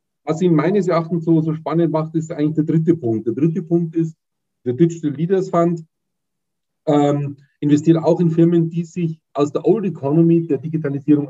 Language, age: German, 40-59